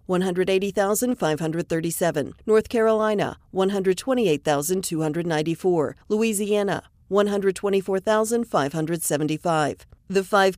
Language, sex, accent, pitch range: English, female, American, 160-200 Hz